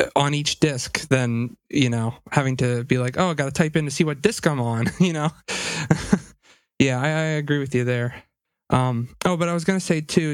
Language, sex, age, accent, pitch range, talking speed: English, male, 20-39, American, 135-160 Hz, 230 wpm